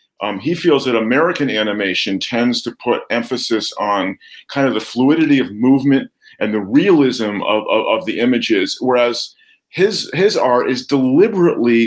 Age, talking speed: 50-69, 155 wpm